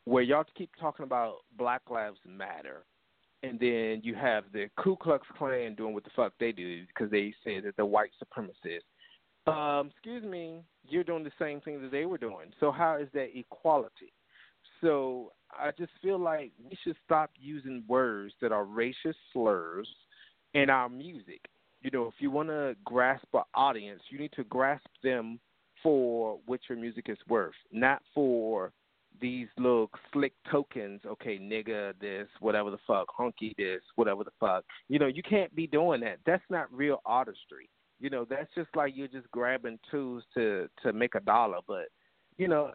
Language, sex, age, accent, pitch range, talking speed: English, male, 40-59, American, 115-160 Hz, 180 wpm